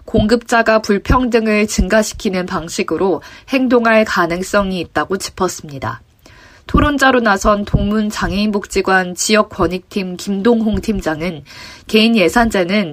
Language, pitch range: Korean, 175-225 Hz